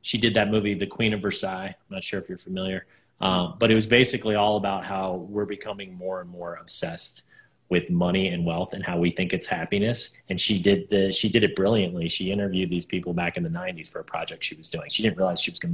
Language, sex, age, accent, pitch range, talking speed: English, male, 30-49, American, 95-125 Hz, 250 wpm